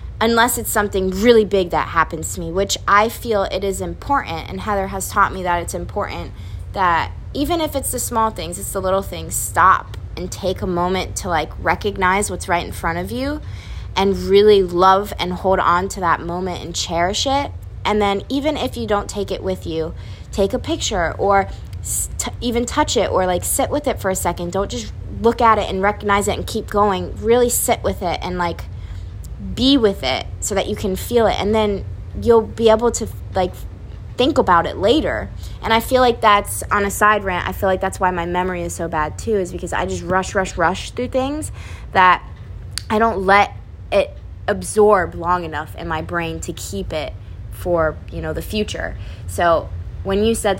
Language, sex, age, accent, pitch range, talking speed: English, female, 20-39, American, 140-210 Hz, 205 wpm